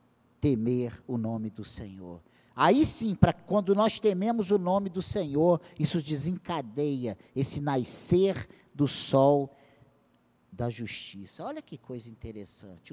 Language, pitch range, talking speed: Portuguese, 120-170 Hz, 120 wpm